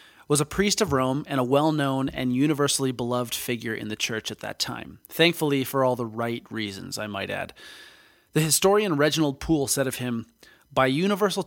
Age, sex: 30-49, male